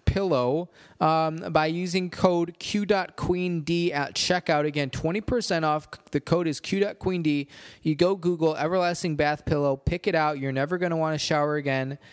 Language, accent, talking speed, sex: English, American, 165 wpm, male